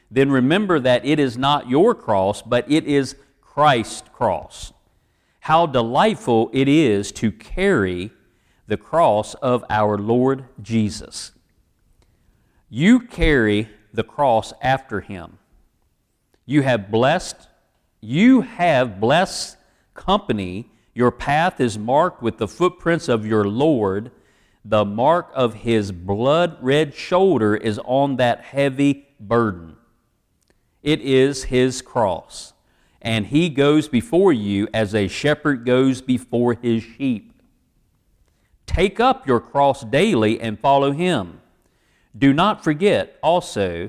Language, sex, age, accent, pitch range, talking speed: English, male, 50-69, American, 110-150 Hz, 120 wpm